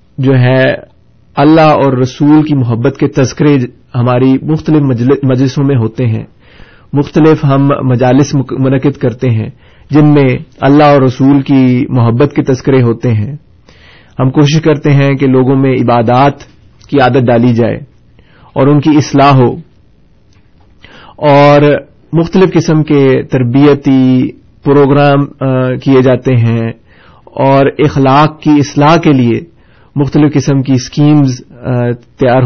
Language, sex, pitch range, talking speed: Urdu, male, 125-150 Hz, 130 wpm